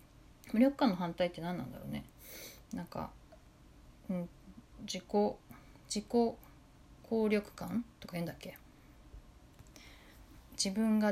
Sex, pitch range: female, 170-240 Hz